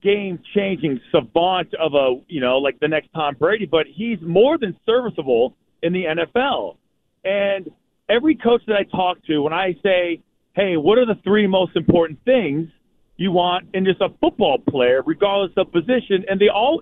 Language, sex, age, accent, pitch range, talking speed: English, male, 40-59, American, 160-210 Hz, 180 wpm